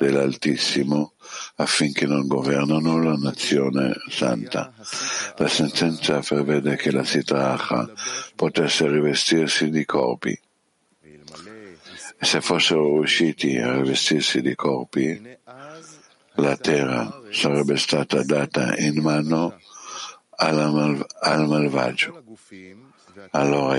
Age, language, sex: 60-79, Italian, male